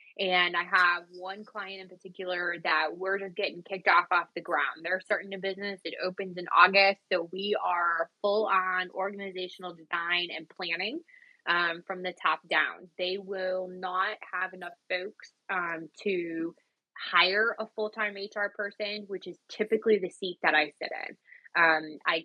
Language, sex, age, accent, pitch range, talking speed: English, female, 20-39, American, 180-215 Hz, 165 wpm